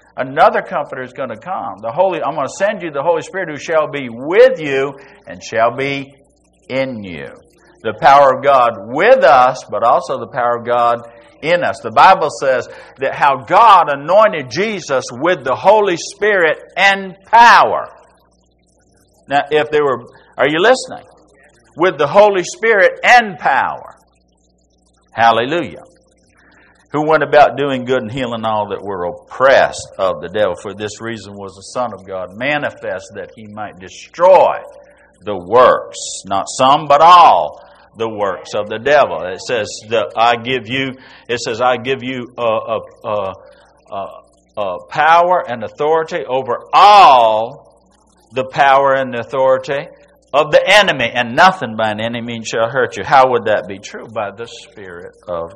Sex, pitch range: male, 115-175 Hz